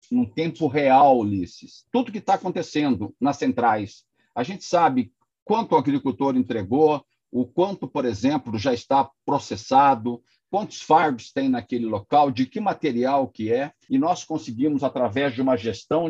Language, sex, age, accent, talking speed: Portuguese, male, 50-69, Brazilian, 155 wpm